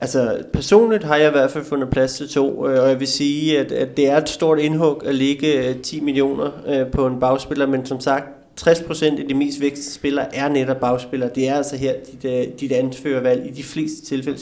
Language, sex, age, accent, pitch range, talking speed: Danish, male, 30-49, native, 130-145 Hz, 215 wpm